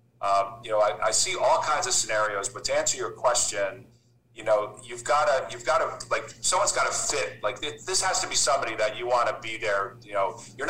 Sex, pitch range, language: male, 105-130 Hz, English